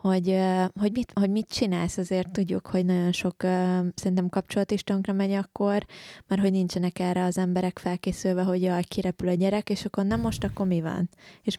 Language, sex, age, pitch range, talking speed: Hungarian, female, 20-39, 175-190 Hz, 165 wpm